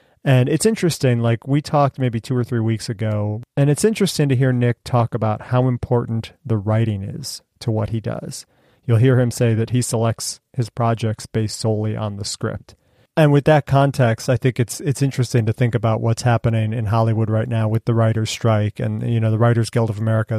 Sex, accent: male, American